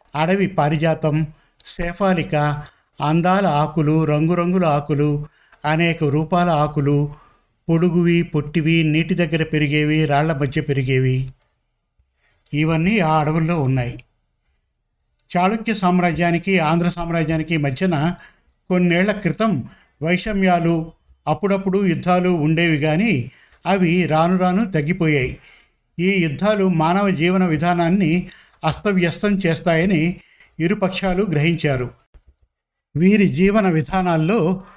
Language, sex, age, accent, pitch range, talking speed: Telugu, male, 50-69, native, 155-185 Hz, 85 wpm